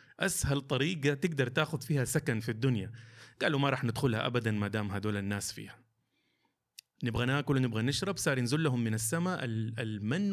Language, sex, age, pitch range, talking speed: Arabic, male, 30-49, 110-140 Hz, 165 wpm